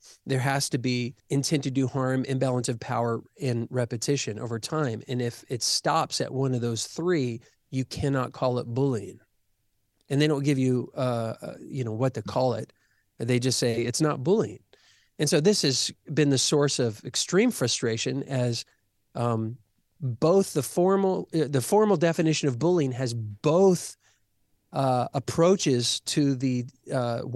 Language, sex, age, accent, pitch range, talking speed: English, male, 40-59, American, 125-150 Hz, 160 wpm